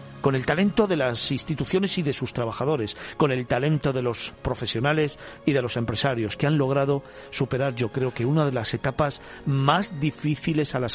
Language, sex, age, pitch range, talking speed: Spanish, male, 50-69, 120-150 Hz, 190 wpm